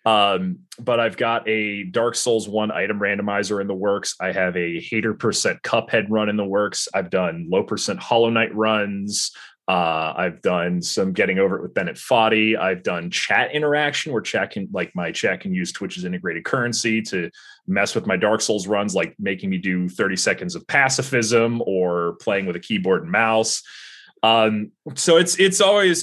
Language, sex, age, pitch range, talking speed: English, male, 30-49, 95-120 Hz, 190 wpm